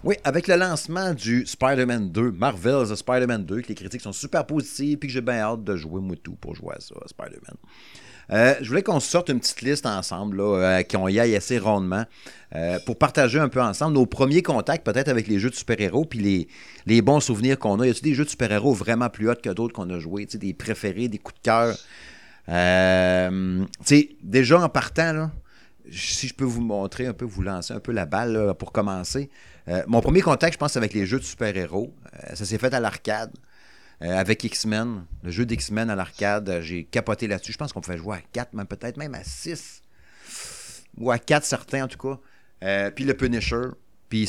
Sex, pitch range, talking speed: male, 100-135 Hz, 220 wpm